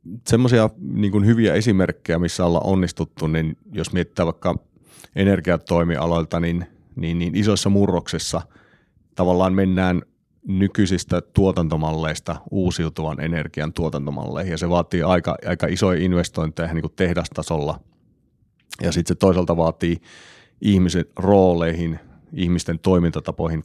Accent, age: native, 30-49